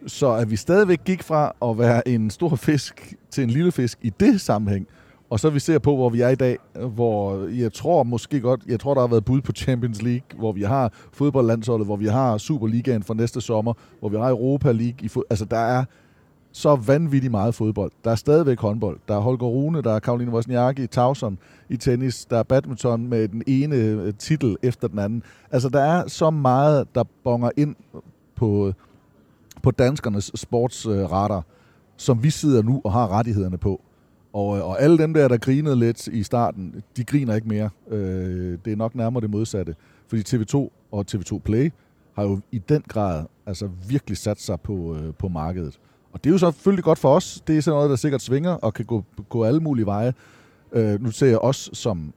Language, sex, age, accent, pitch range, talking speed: Danish, male, 30-49, native, 105-135 Hz, 205 wpm